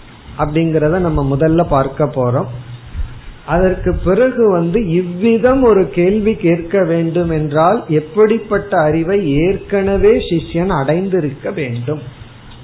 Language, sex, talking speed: Tamil, male, 90 wpm